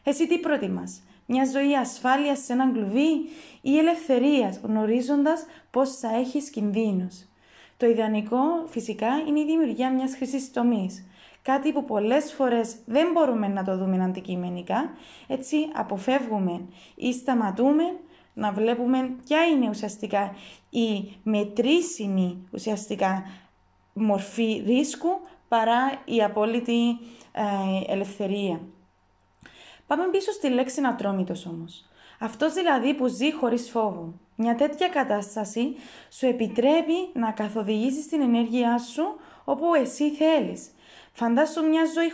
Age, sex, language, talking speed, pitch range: 20-39, female, Greek, 130 wpm, 205-285 Hz